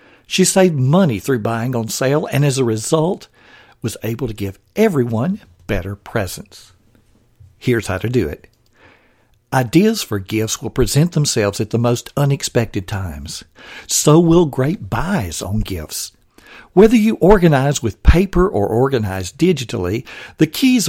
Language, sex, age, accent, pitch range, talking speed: English, male, 60-79, American, 110-155 Hz, 145 wpm